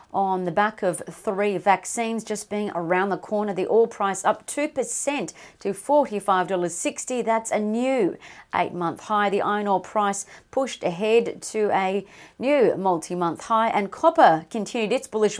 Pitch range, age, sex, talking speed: 195-230 Hz, 40-59, female, 150 wpm